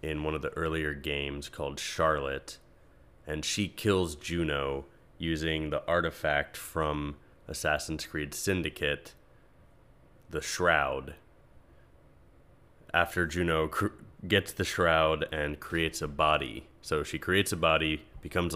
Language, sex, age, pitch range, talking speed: English, male, 20-39, 70-85 Hz, 115 wpm